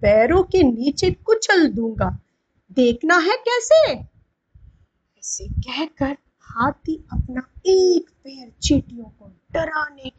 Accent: native